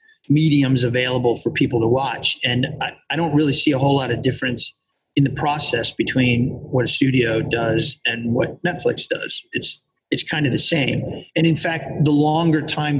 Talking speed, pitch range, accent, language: 190 wpm, 125-150 Hz, American, English